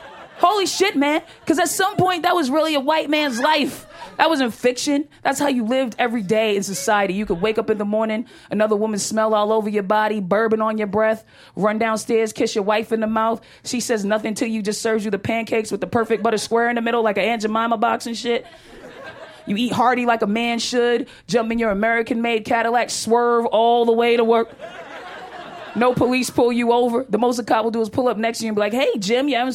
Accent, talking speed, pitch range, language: American, 240 wpm, 220-260 Hz, English